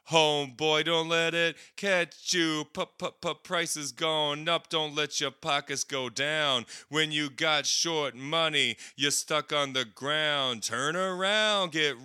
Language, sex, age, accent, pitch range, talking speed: English, male, 30-49, American, 115-155 Hz, 145 wpm